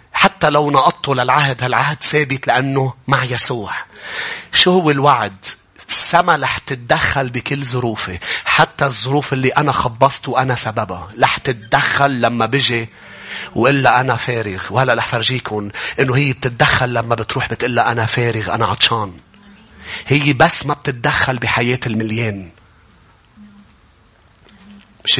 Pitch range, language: 110-140 Hz, English